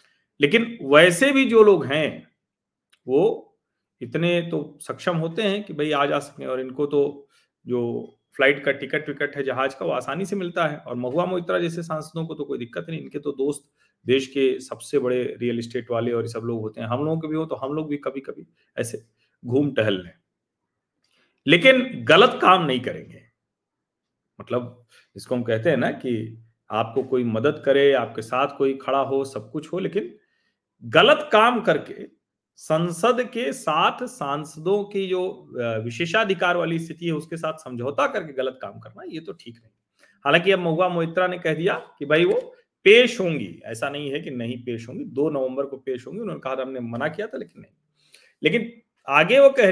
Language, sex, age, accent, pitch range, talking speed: Hindi, male, 40-59, native, 130-180 Hz, 190 wpm